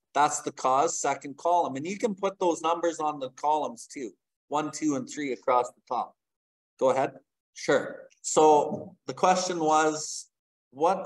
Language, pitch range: English, 155-190 Hz